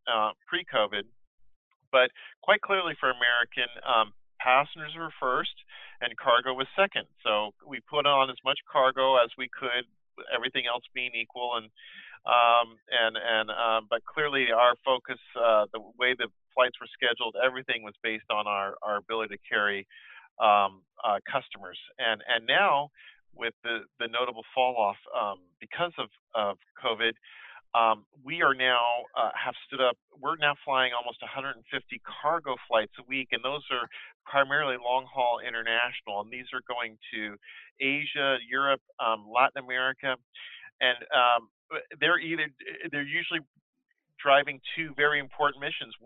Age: 40-59